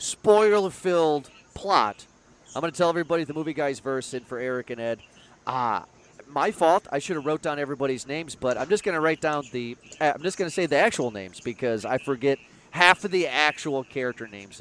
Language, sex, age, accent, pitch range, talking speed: English, male, 30-49, American, 125-165 Hz, 215 wpm